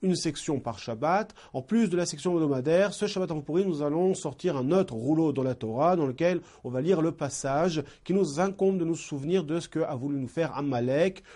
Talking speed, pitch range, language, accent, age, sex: 225 wpm, 140-180 Hz, French, French, 40-59, male